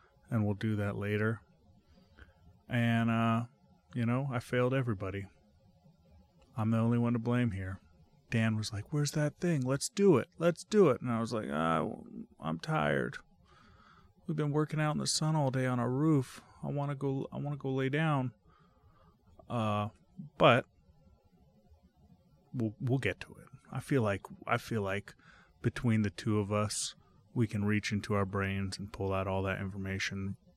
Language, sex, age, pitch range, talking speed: English, male, 30-49, 100-140 Hz, 175 wpm